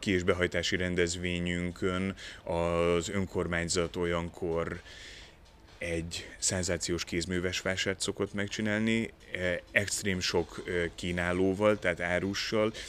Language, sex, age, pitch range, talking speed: Hungarian, male, 30-49, 85-100 Hz, 80 wpm